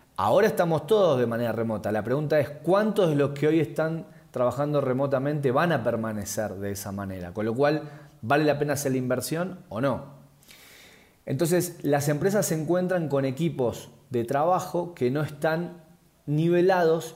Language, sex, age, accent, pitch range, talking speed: Spanish, male, 30-49, Argentinian, 125-160 Hz, 165 wpm